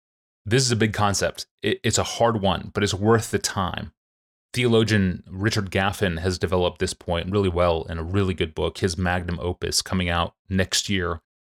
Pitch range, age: 90-110 Hz, 30-49